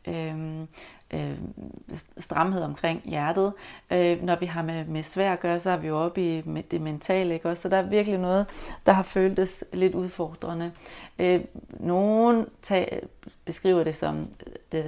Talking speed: 165 wpm